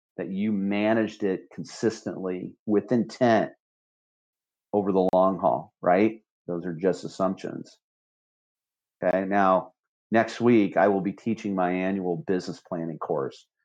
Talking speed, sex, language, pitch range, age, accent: 125 wpm, male, English, 90-110 Hz, 40-59, American